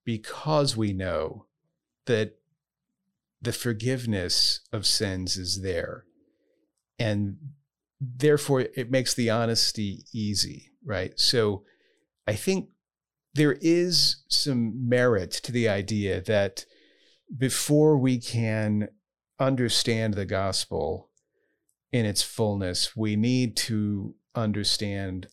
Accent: American